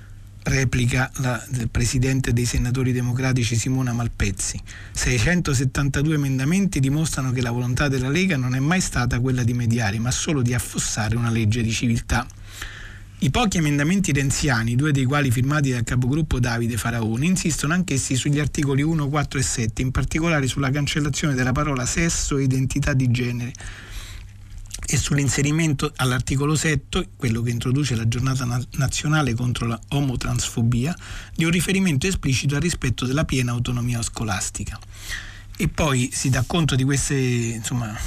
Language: Italian